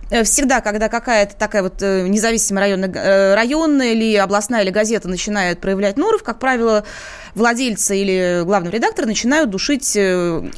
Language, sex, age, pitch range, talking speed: Russian, female, 20-39, 205-270 Hz, 130 wpm